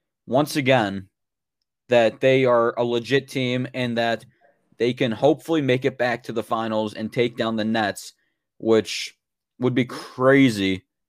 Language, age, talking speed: English, 20-39, 150 wpm